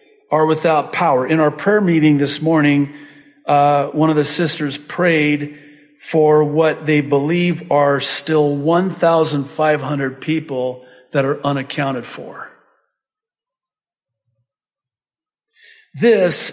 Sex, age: male, 50-69